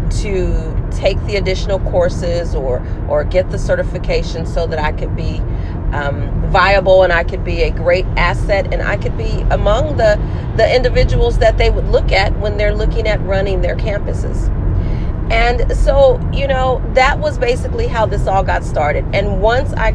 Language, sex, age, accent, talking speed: English, female, 40-59, American, 175 wpm